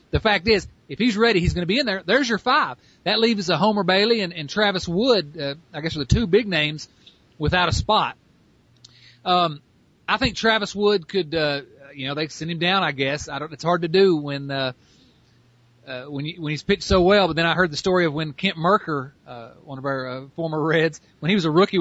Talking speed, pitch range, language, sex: 240 wpm, 140-195 Hz, English, male